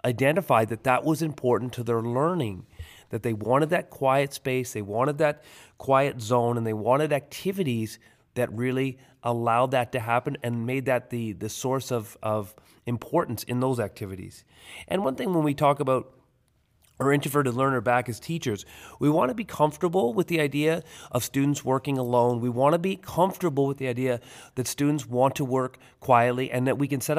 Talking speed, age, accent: 190 wpm, 30-49, American